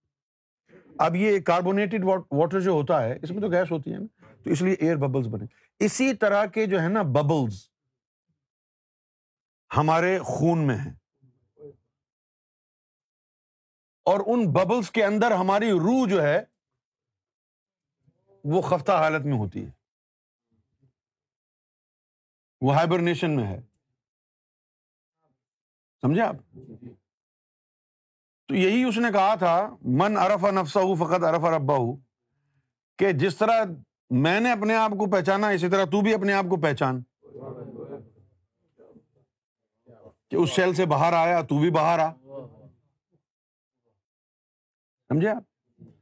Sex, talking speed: male, 115 wpm